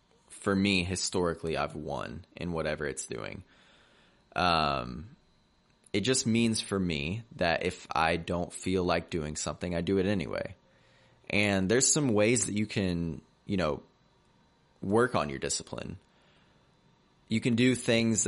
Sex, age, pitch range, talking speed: male, 20-39, 85-110 Hz, 145 wpm